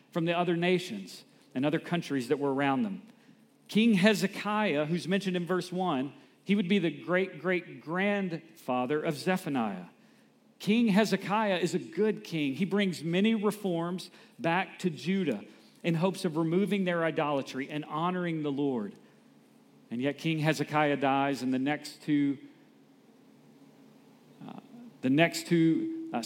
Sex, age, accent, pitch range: male, 50-69, American, 145-195 Hz